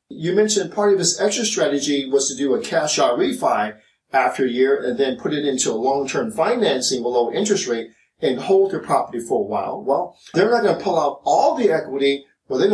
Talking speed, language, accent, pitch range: 215 wpm, English, American, 140-220 Hz